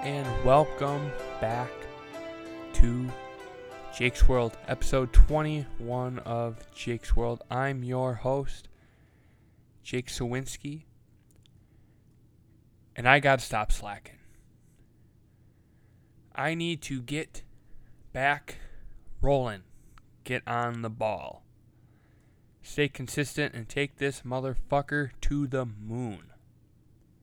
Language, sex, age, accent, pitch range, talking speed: English, male, 20-39, American, 110-135 Hz, 90 wpm